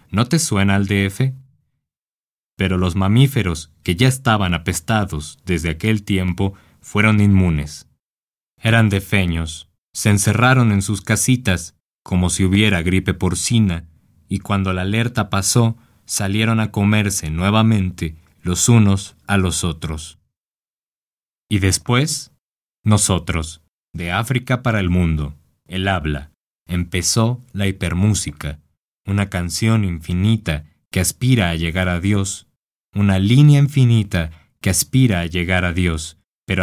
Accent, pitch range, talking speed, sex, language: Mexican, 80-105 Hz, 125 wpm, male, Spanish